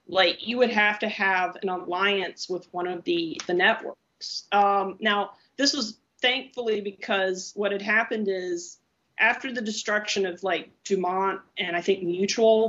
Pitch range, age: 190-225 Hz, 30-49